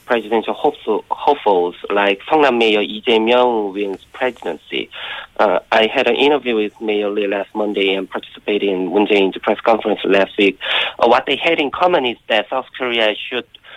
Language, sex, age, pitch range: Korean, male, 30-49, 105-130 Hz